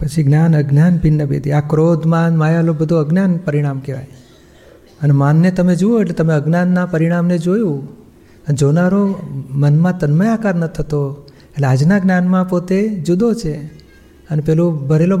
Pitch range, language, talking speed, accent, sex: 145-175 Hz, Gujarati, 145 wpm, native, male